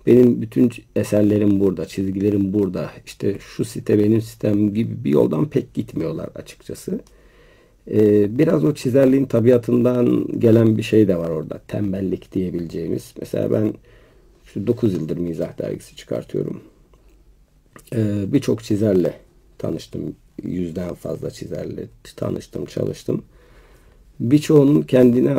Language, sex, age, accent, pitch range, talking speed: Turkish, male, 50-69, native, 100-120 Hz, 115 wpm